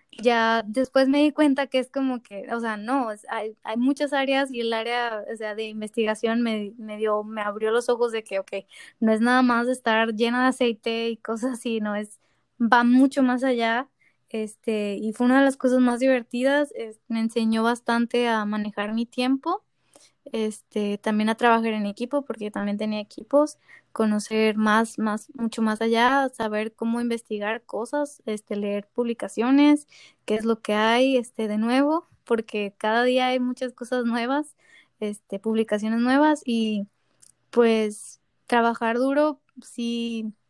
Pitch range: 220-250 Hz